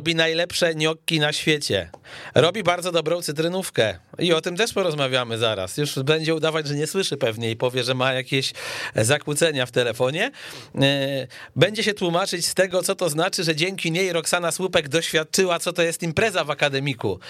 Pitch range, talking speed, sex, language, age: 130-160 Hz, 175 wpm, male, Polish, 40-59